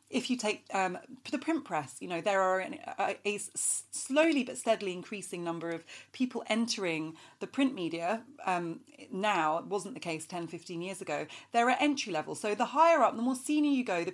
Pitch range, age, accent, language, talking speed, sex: 175-245 Hz, 30-49, British, English, 205 wpm, female